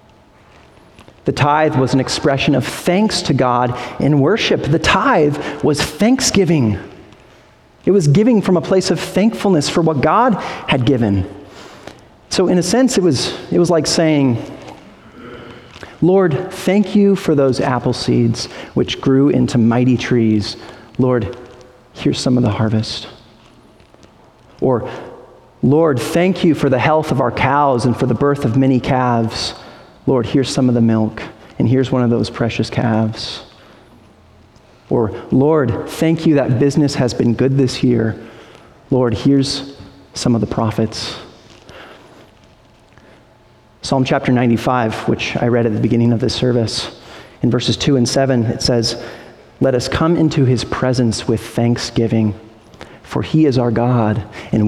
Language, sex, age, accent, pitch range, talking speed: English, male, 40-59, American, 115-145 Hz, 150 wpm